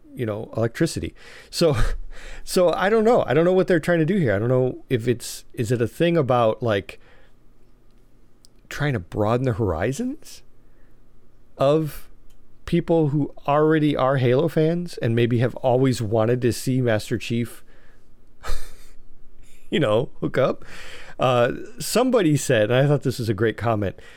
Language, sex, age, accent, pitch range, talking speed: English, male, 40-59, American, 110-145 Hz, 160 wpm